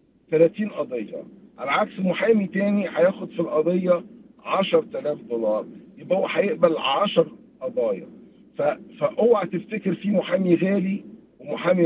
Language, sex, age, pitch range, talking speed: Arabic, male, 50-69, 160-210 Hz, 115 wpm